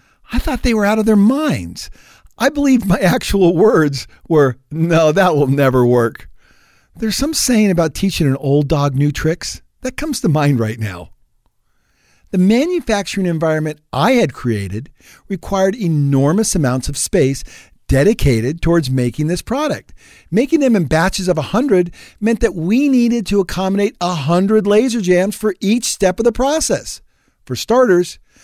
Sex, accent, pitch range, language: male, American, 140-210 Hz, English